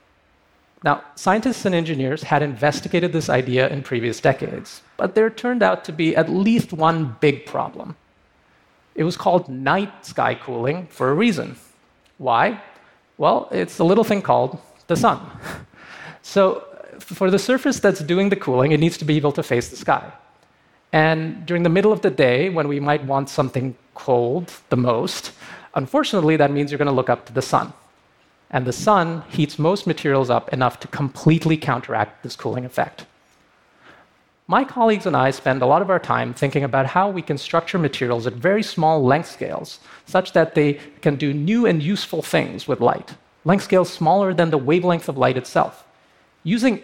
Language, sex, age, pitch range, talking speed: English, male, 30-49, 140-185 Hz, 180 wpm